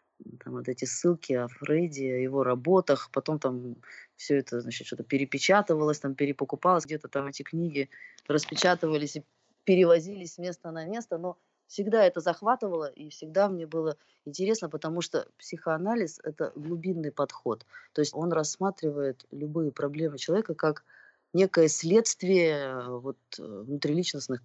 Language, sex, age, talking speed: Russian, female, 20-39, 140 wpm